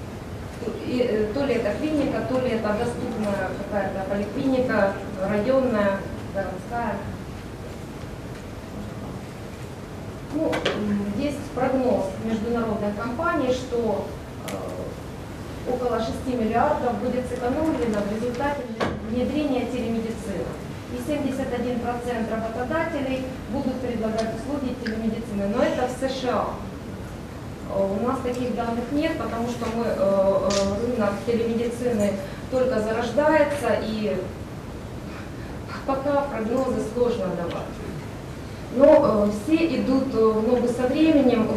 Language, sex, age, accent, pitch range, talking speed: Russian, female, 20-39, native, 205-255 Hz, 90 wpm